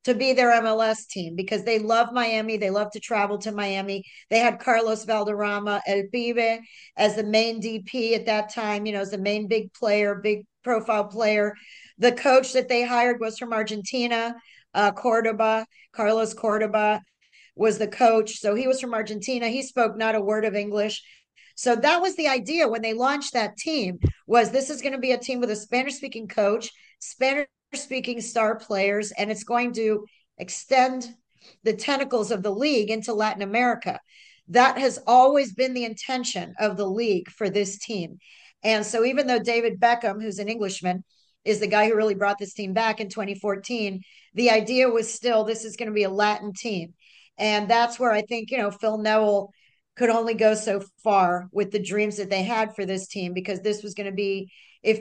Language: English